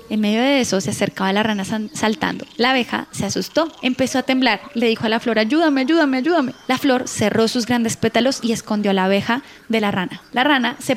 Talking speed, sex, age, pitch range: 225 wpm, female, 10-29, 210-265 Hz